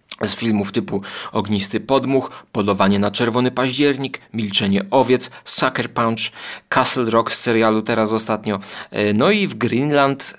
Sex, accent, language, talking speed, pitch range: male, native, Polish, 135 wpm, 100-120 Hz